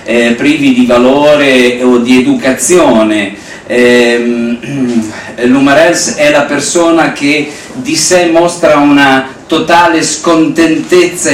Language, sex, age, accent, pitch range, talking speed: Italian, male, 50-69, native, 125-175 Hz, 105 wpm